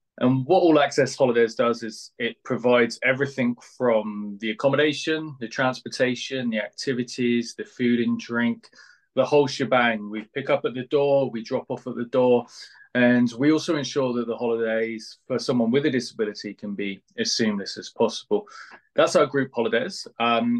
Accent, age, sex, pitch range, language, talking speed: British, 20-39, male, 115-140 Hz, English, 170 wpm